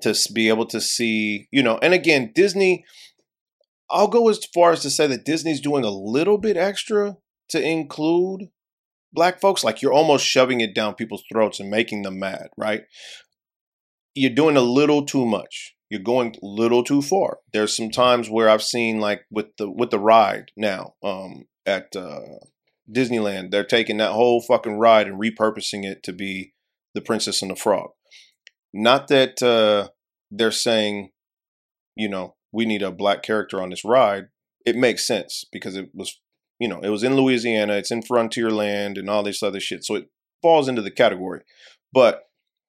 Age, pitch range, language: 30-49, 105-140 Hz, English